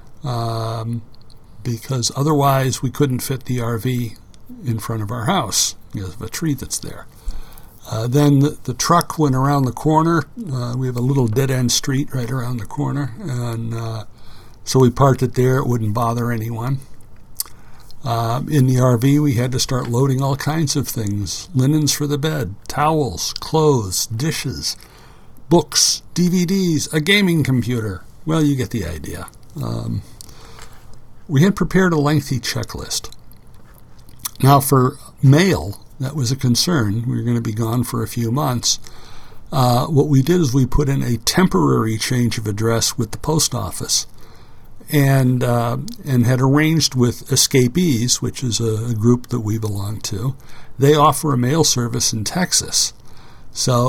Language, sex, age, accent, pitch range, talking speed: English, male, 60-79, American, 115-140 Hz, 160 wpm